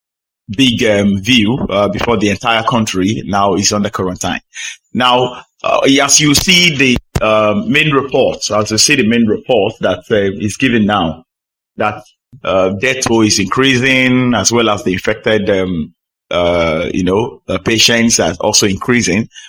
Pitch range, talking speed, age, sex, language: 105-130 Hz, 165 wpm, 30-49, male, English